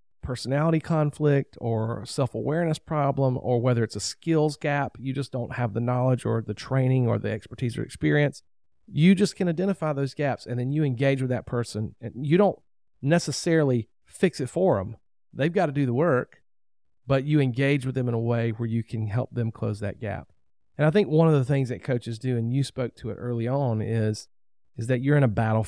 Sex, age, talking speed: male, 40-59, 215 wpm